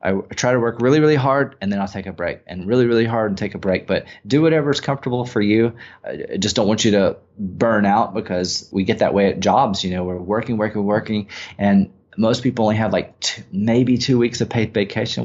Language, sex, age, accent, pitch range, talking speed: English, male, 30-49, American, 95-120 Hz, 240 wpm